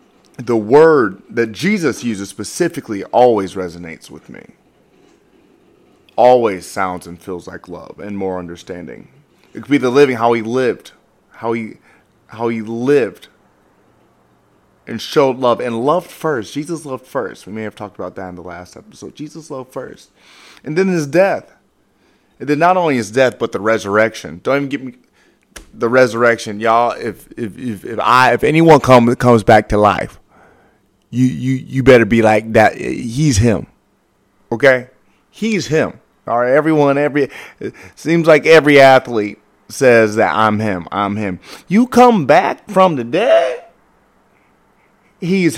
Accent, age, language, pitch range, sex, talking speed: American, 30-49, English, 105-150 Hz, male, 160 wpm